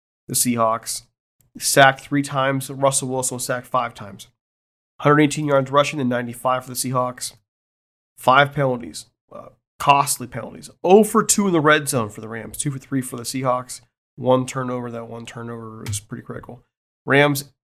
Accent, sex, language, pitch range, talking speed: American, male, English, 120-140 Hz, 165 wpm